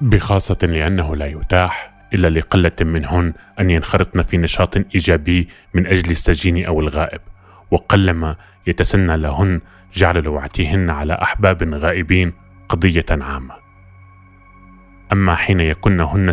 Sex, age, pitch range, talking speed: male, 20-39, 85-100 Hz, 110 wpm